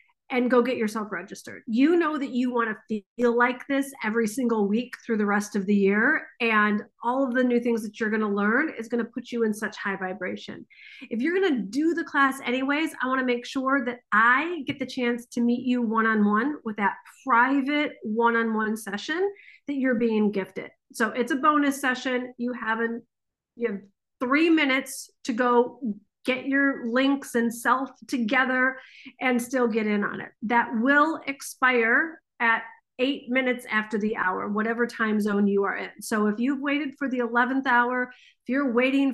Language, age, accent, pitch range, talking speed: English, 40-59, American, 225-270 Hz, 185 wpm